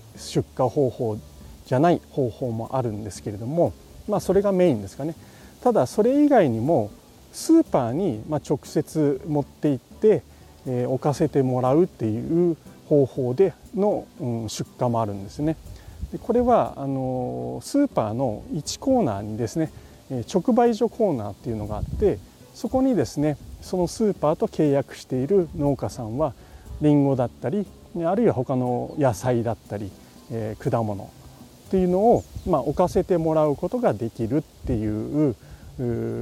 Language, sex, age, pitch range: Japanese, male, 40-59, 115-175 Hz